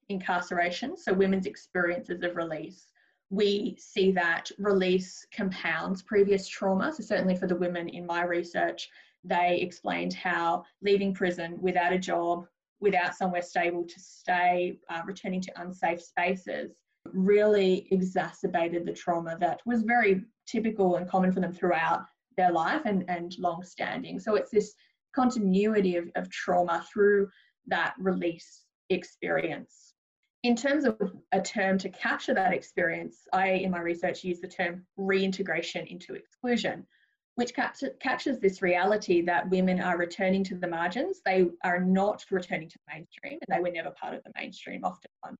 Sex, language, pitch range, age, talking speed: female, English, 175-205 Hz, 20-39, 150 wpm